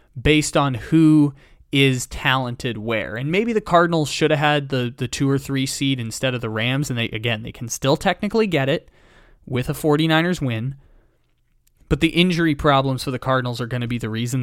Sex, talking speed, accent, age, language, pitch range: male, 205 wpm, American, 20-39, English, 120-160 Hz